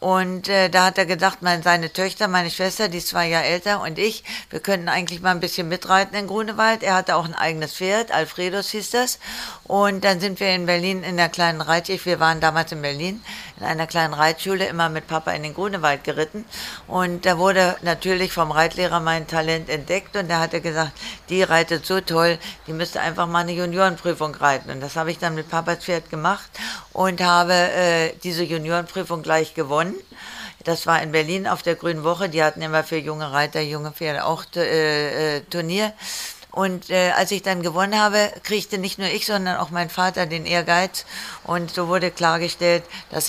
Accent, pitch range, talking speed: German, 165-190 Hz, 200 wpm